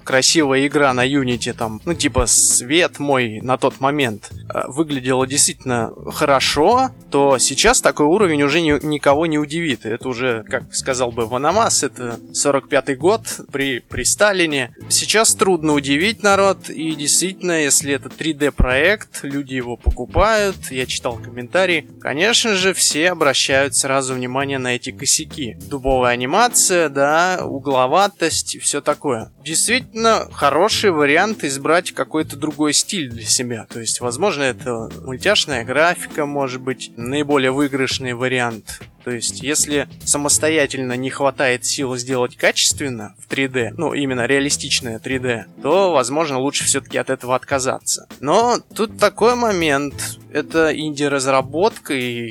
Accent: native